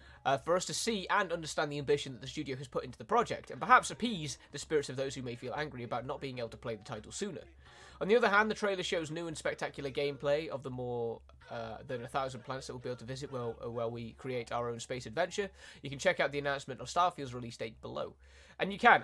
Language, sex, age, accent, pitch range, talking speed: Italian, male, 20-39, British, 125-160 Hz, 270 wpm